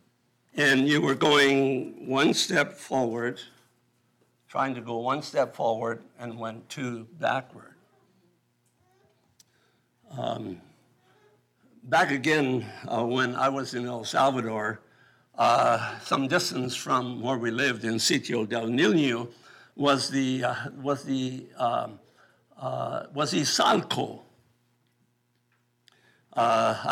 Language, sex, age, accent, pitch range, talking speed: English, male, 60-79, American, 120-145 Hz, 105 wpm